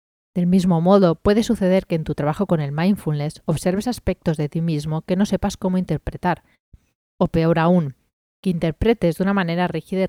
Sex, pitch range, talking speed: female, 150-195 Hz, 190 wpm